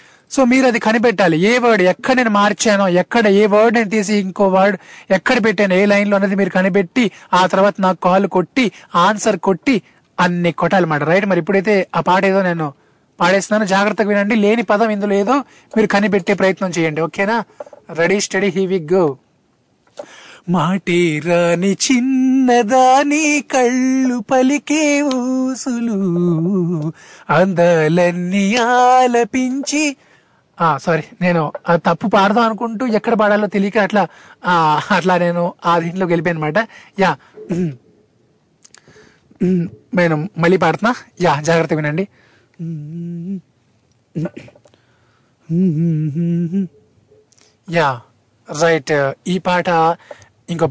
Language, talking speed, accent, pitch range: Telugu, 100 wpm, native, 170-215 Hz